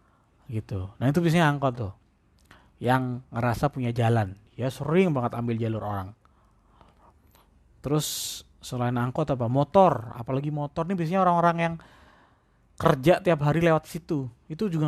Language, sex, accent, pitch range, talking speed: Indonesian, male, native, 120-170 Hz, 135 wpm